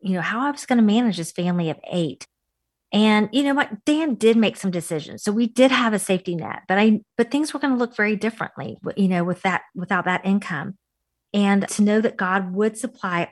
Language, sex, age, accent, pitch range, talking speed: English, female, 40-59, American, 170-215 Hz, 235 wpm